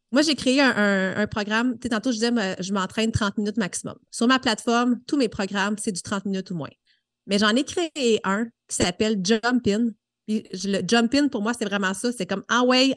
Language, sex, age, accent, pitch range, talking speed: French, female, 30-49, Canadian, 195-250 Hz, 225 wpm